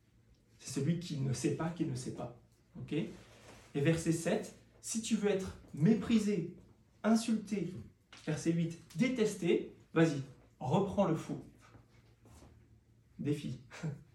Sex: male